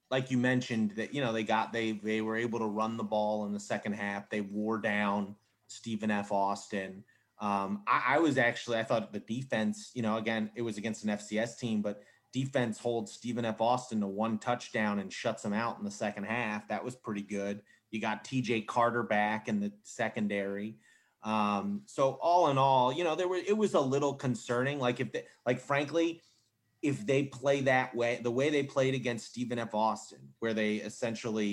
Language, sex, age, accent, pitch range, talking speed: English, male, 30-49, American, 105-125 Hz, 205 wpm